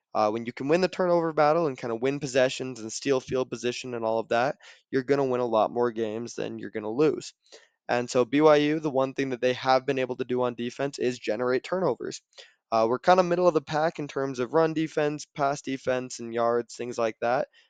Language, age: English, 20-39